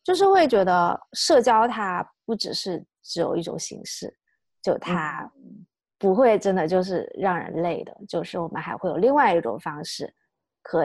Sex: female